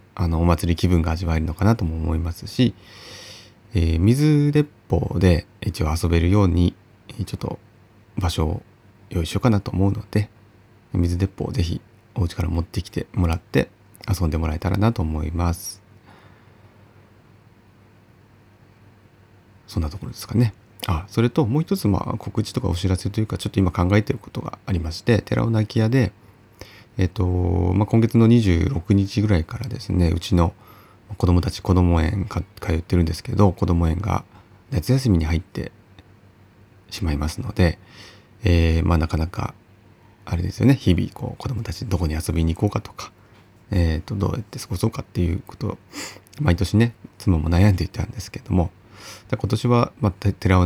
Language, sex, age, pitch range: Japanese, male, 30-49, 90-110 Hz